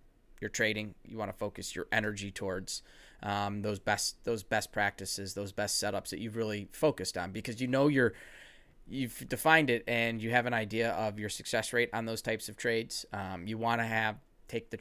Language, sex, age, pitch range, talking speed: English, male, 20-39, 105-120 Hz, 205 wpm